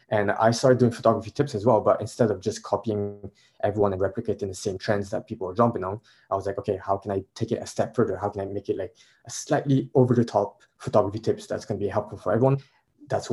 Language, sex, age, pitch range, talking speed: English, male, 20-39, 100-120 Hz, 250 wpm